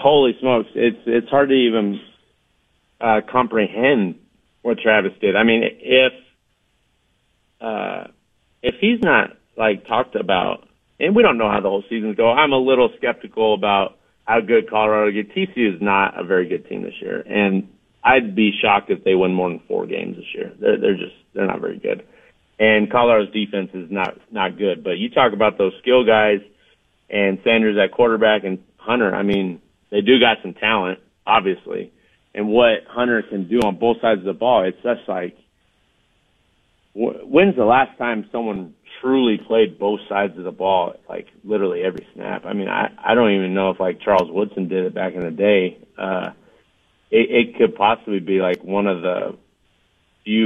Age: 40-59